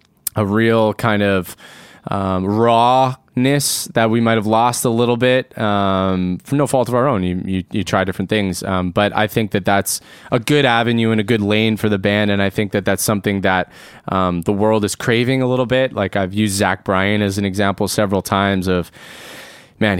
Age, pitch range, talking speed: 20-39, 100-115 Hz, 205 wpm